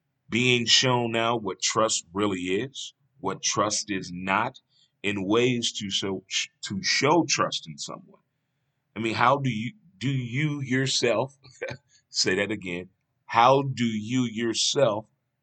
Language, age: English, 30-49